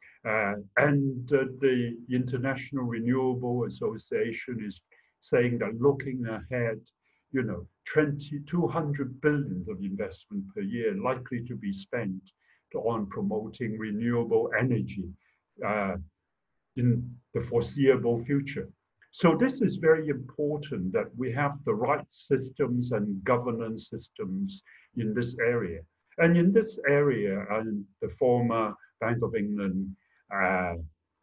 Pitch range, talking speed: 105-135 Hz, 125 wpm